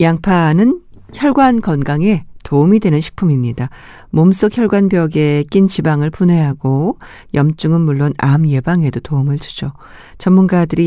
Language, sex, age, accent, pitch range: Korean, female, 50-69, native, 145-200 Hz